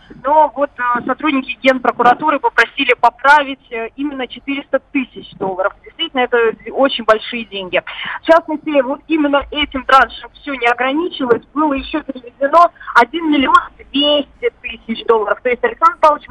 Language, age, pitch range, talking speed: Russian, 20-39, 235-295 Hz, 140 wpm